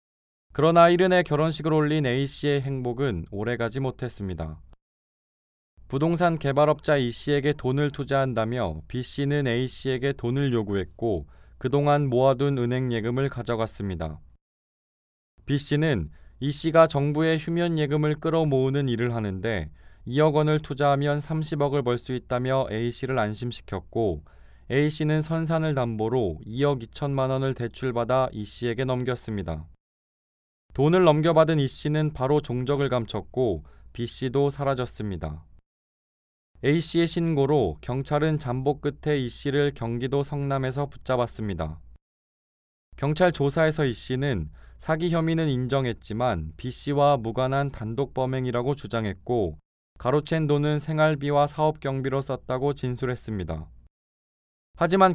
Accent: native